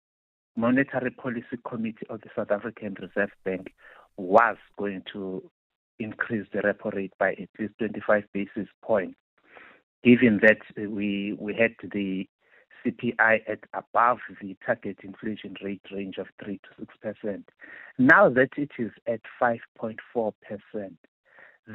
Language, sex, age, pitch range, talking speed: English, male, 60-79, 100-120 Hz, 125 wpm